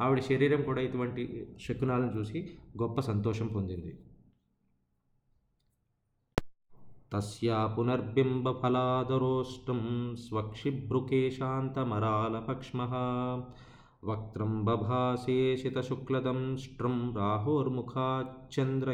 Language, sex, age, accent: Telugu, male, 20-39, native